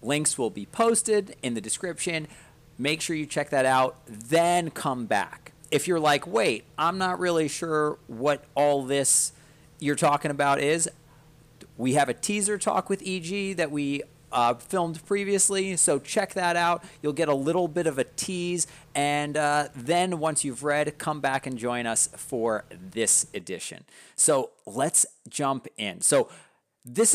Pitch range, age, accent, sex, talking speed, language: 130-170 Hz, 40-59, American, male, 165 wpm, English